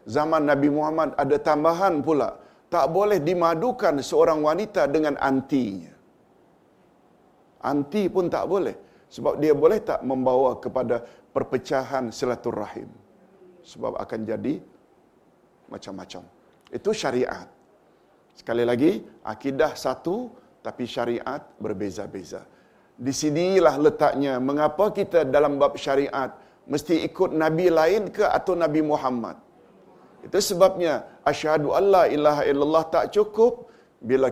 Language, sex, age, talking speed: Malayalam, male, 50-69, 115 wpm